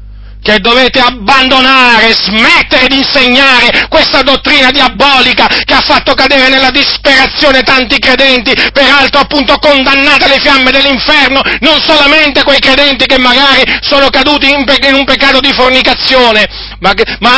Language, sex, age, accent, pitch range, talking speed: Italian, male, 40-59, native, 255-290 Hz, 140 wpm